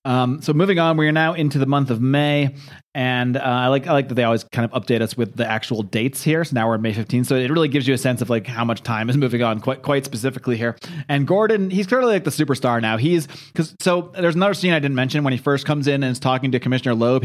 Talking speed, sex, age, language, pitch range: 290 wpm, male, 30-49, English, 120-150 Hz